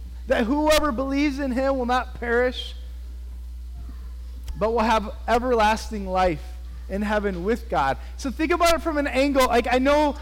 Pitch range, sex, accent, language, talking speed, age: 200-285 Hz, male, American, English, 160 wpm, 30-49